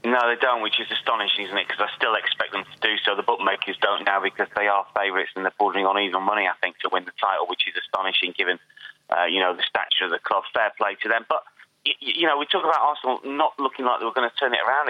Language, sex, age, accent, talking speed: English, male, 30-49, British, 280 wpm